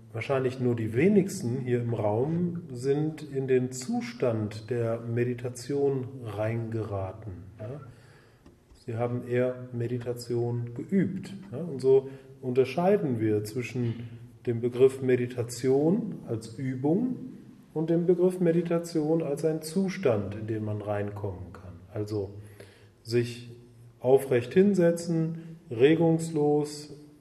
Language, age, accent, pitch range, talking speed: German, 30-49, German, 115-150 Hz, 100 wpm